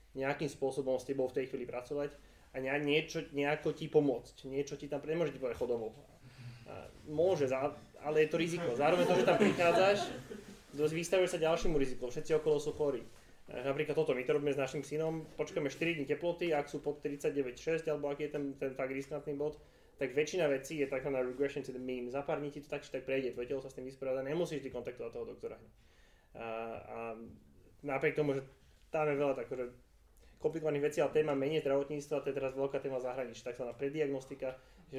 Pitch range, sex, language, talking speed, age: 130-150 Hz, male, Slovak, 195 wpm, 20-39